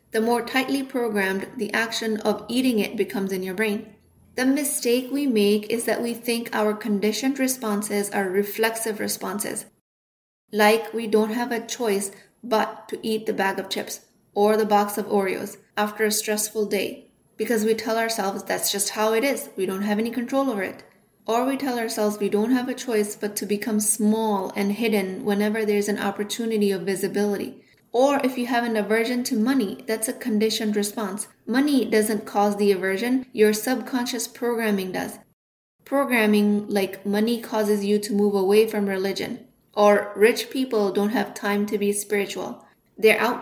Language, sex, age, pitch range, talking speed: English, female, 20-39, 205-230 Hz, 175 wpm